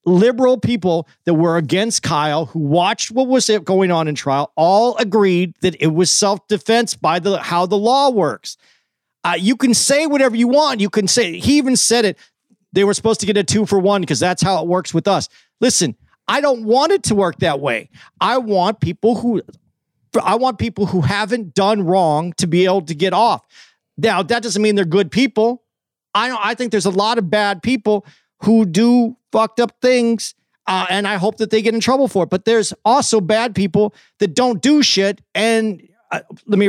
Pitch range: 180-230 Hz